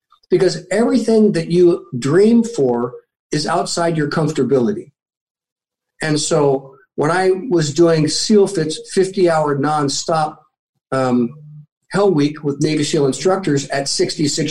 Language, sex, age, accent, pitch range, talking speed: English, male, 50-69, American, 150-200 Hz, 120 wpm